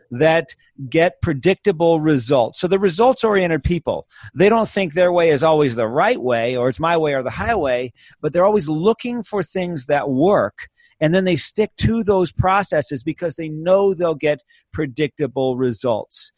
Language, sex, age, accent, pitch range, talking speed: English, male, 40-59, American, 145-185 Hz, 170 wpm